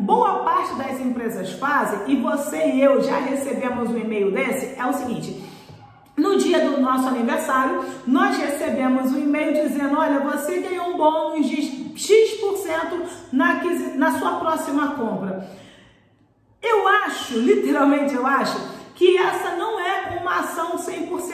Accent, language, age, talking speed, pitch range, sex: Brazilian, Portuguese, 40-59, 140 wpm, 275-370 Hz, female